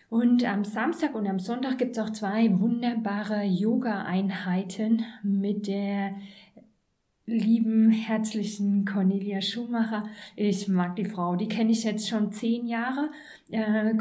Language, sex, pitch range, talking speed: German, female, 200-230 Hz, 130 wpm